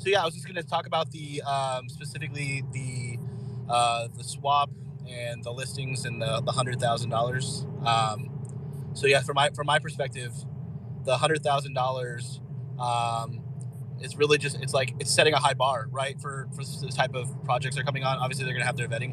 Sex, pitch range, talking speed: male, 130-145 Hz, 195 wpm